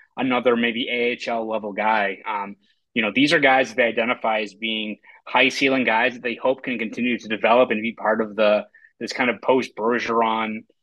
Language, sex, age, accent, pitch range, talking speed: English, male, 30-49, American, 110-140 Hz, 200 wpm